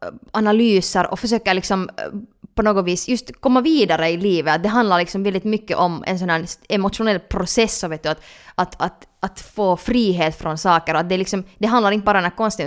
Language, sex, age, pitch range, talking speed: Swedish, female, 20-39, 170-220 Hz, 210 wpm